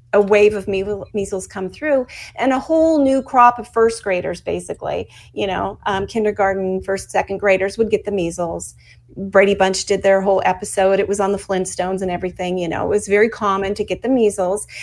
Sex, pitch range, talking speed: female, 190-230 Hz, 200 wpm